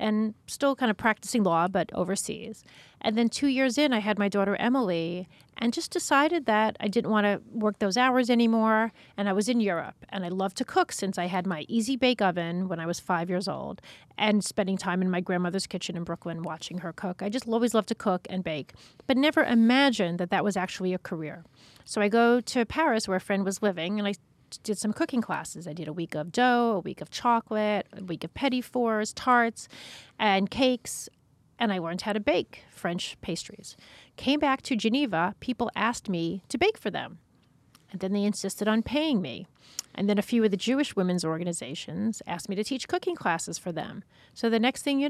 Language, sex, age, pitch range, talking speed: English, female, 30-49, 185-240 Hz, 215 wpm